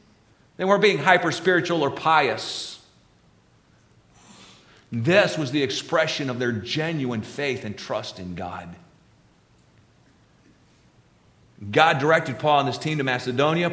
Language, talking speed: English, 115 wpm